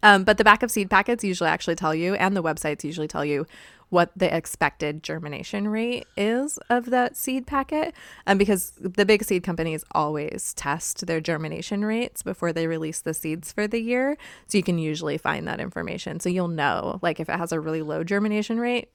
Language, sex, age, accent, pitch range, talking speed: English, female, 20-39, American, 165-210 Hz, 210 wpm